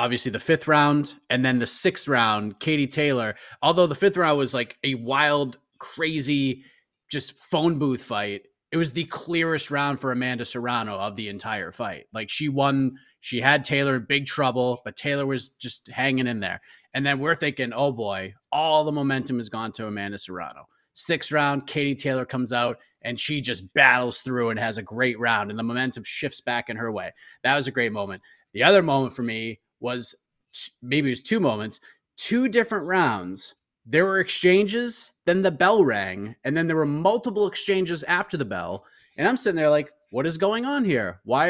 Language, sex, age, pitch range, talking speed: English, male, 30-49, 120-180 Hz, 195 wpm